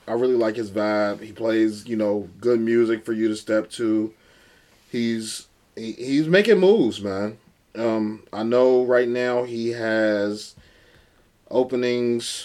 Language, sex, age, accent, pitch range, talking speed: English, male, 20-39, American, 100-115 Hz, 145 wpm